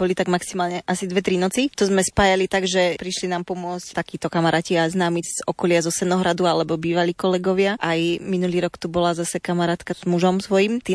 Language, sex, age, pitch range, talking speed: Slovak, female, 20-39, 175-190 Hz, 195 wpm